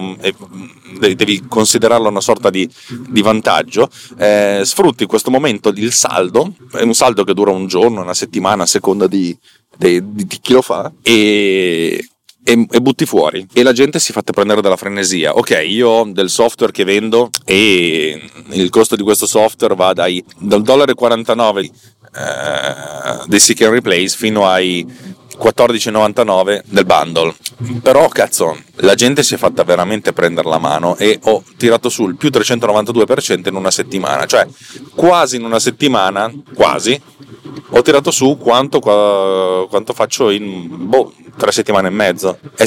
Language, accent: Italian, native